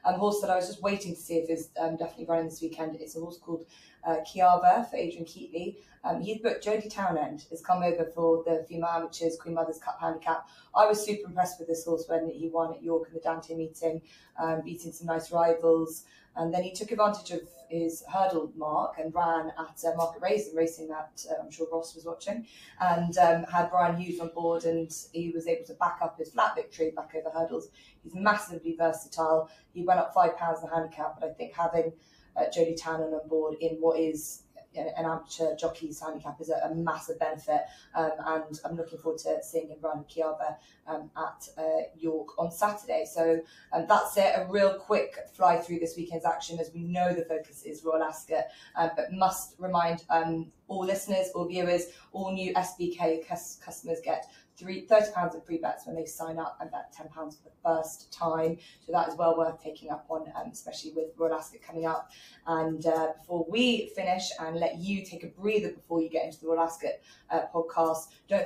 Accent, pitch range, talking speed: British, 160-175 Hz, 210 wpm